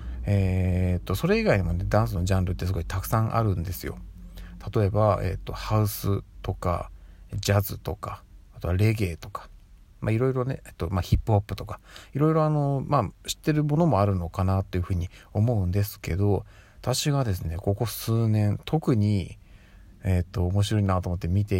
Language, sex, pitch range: Japanese, male, 95-115 Hz